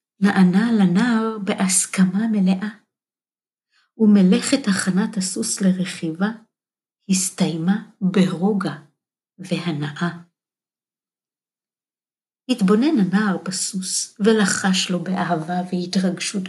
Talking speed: 65 wpm